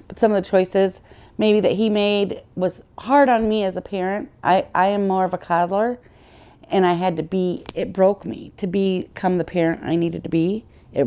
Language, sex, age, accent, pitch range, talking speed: English, female, 40-59, American, 170-205 Hz, 210 wpm